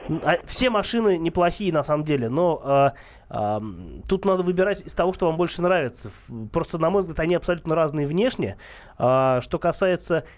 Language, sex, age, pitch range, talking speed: Russian, male, 20-39, 130-175 Hz, 150 wpm